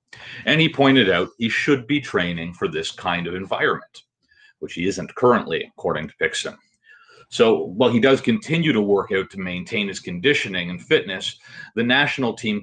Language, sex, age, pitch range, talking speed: English, male, 40-59, 95-140 Hz, 175 wpm